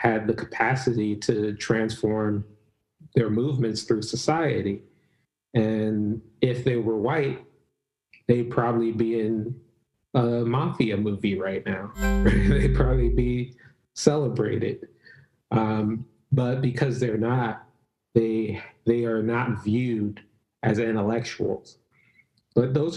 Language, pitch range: English, 105-120 Hz